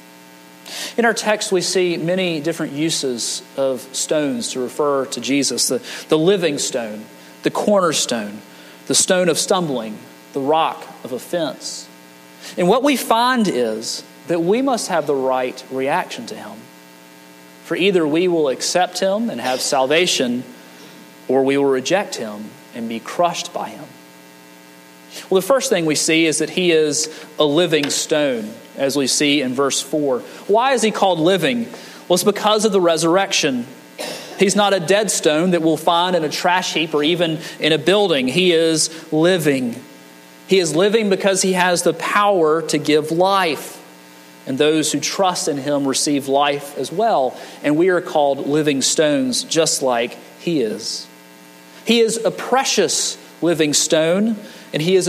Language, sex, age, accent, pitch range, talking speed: English, male, 40-59, American, 125-190 Hz, 165 wpm